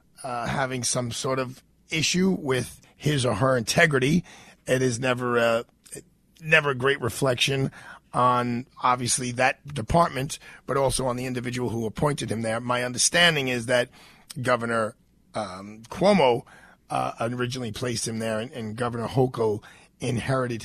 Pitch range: 120-140 Hz